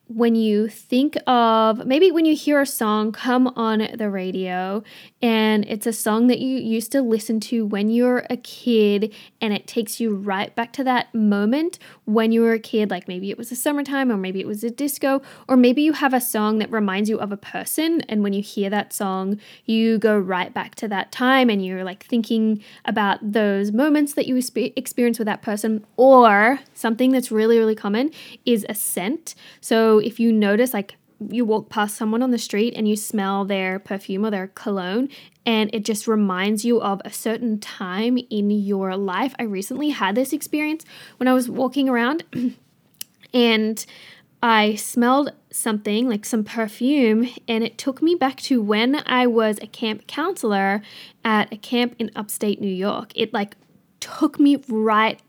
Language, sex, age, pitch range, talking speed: English, female, 10-29, 210-250 Hz, 190 wpm